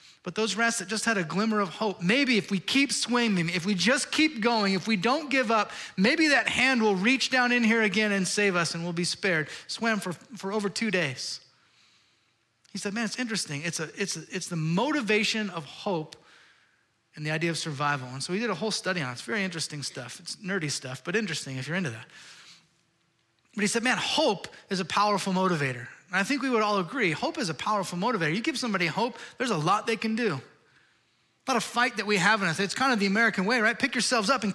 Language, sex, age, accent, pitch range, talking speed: English, male, 30-49, American, 175-230 Hz, 240 wpm